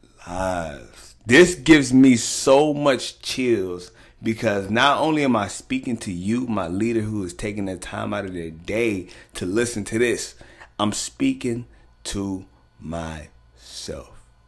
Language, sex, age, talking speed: English, male, 30-49, 140 wpm